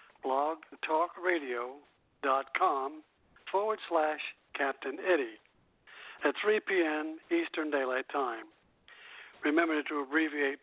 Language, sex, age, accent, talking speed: English, male, 60-79, American, 85 wpm